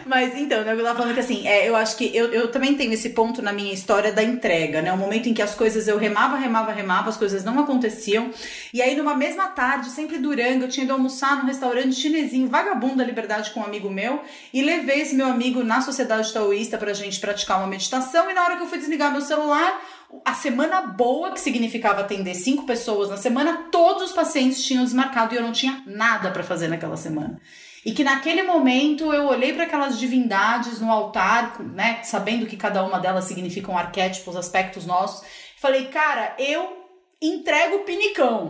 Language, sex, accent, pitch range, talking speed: Portuguese, female, Brazilian, 215-300 Hz, 205 wpm